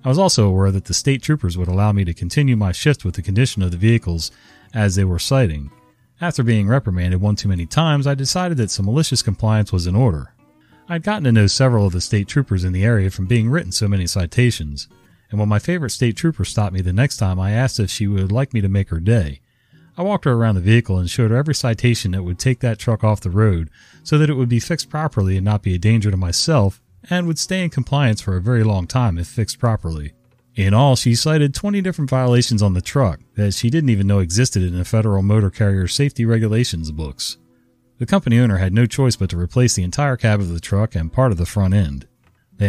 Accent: American